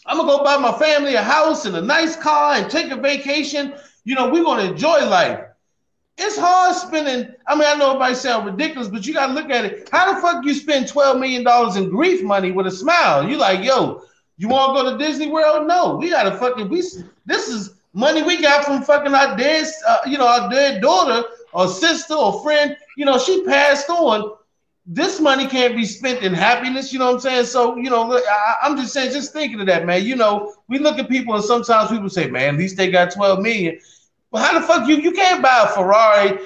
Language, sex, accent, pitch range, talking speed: English, male, American, 210-300 Hz, 235 wpm